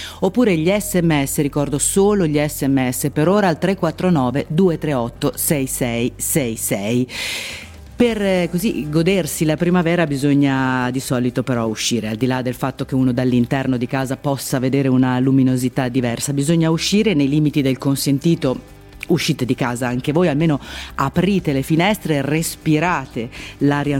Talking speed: 140 wpm